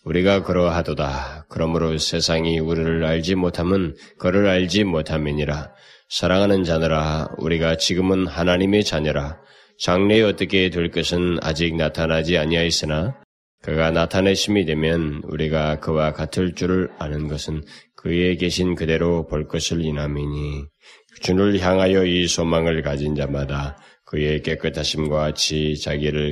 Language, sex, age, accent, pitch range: Korean, male, 20-39, native, 75-90 Hz